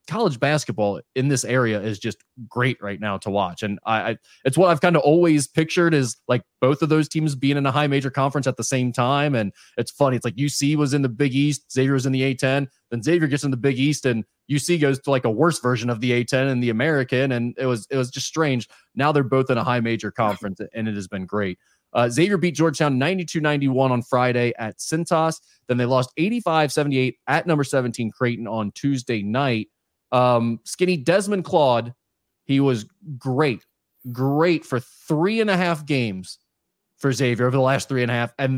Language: English